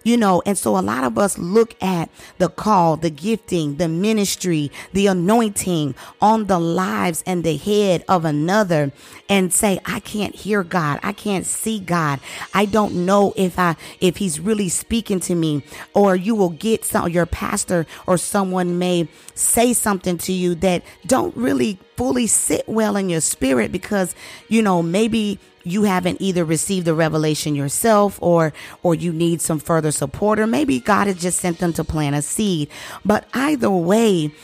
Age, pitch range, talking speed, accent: 40-59, 165-210 Hz, 180 wpm, American